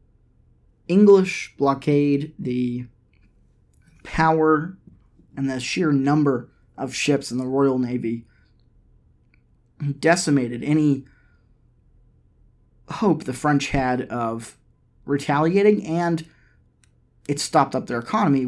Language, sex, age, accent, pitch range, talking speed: English, male, 20-39, American, 125-155 Hz, 90 wpm